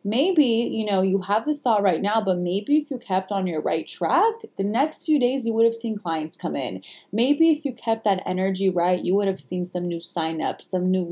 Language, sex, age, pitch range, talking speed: English, female, 20-39, 175-230 Hz, 245 wpm